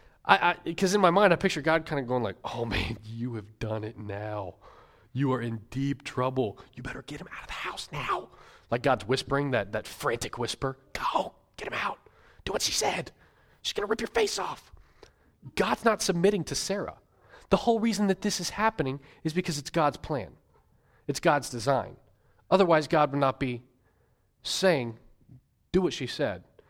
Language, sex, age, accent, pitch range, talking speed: English, male, 30-49, American, 120-170 Hz, 195 wpm